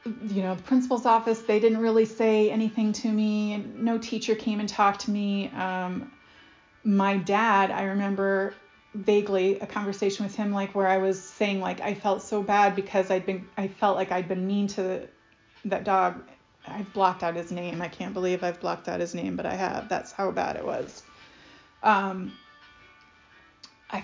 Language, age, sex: English, 30-49, female